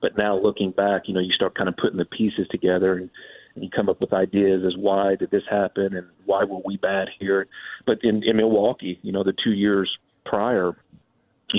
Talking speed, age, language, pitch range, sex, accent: 225 wpm, 40-59, English, 95-110 Hz, male, American